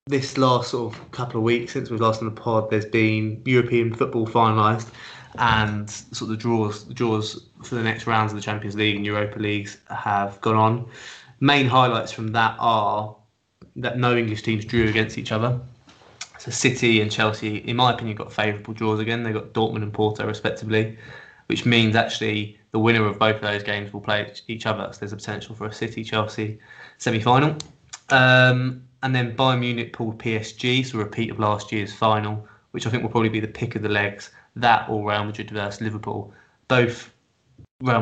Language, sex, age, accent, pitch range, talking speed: English, male, 20-39, British, 110-120 Hz, 195 wpm